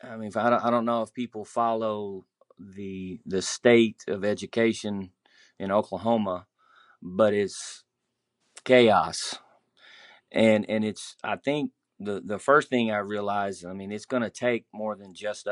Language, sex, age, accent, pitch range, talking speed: English, male, 30-49, American, 95-115 Hz, 145 wpm